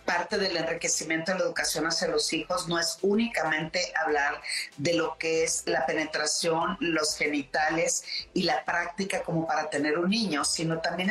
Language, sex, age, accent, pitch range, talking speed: Spanish, female, 40-59, Mexican, 165-200 Hz, 165 wpm